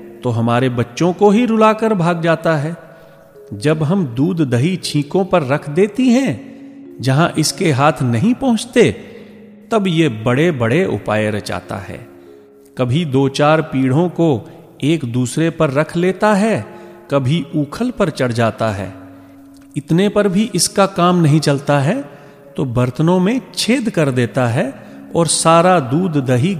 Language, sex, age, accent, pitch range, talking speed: Hindi, male, 40-59, native, 110-175 Hz, 150 wpm